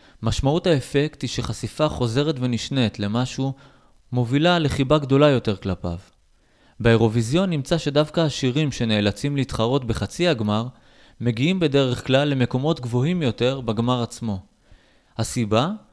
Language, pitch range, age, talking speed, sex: Hebrew, 115-150 Hz, 20-39, 110 wpm, male